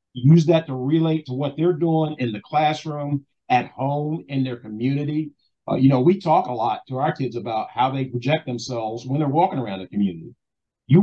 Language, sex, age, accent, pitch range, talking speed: English, male, 50-69, American, 120-165 Hz, 205 wpm